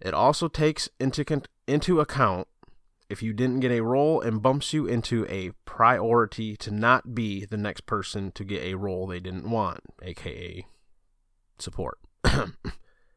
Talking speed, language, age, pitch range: 150 wpm, English, 20-39, 95-125 Hz